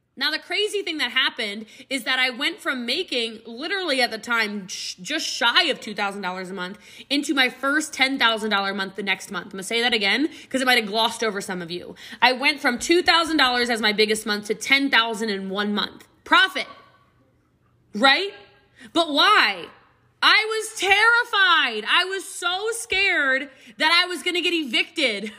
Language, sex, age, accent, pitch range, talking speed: English, female, 20-39, American, 225-320 Hz, 180 wpm